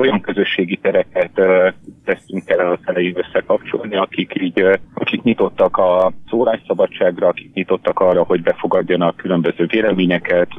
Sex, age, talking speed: male, 30-49, 130 wpm